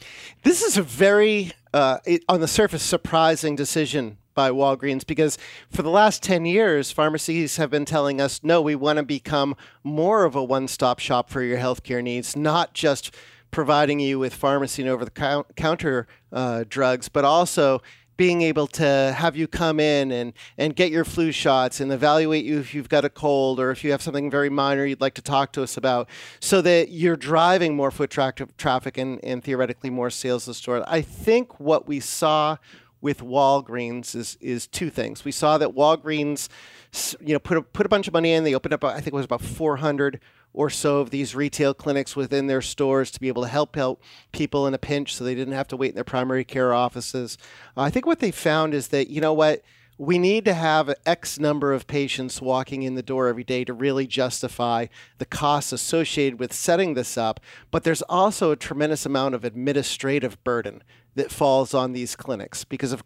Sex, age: male, 40-59